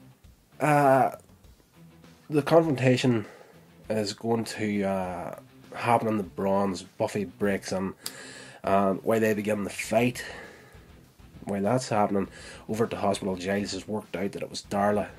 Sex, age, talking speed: male, 20-39, 140 wpm